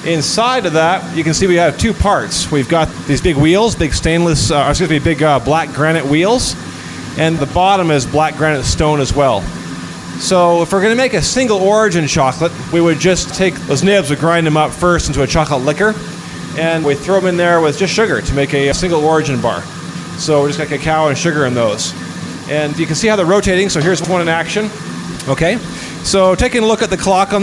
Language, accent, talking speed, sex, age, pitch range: English, American, 225 wpm, male, 30-49, 145-185 Hz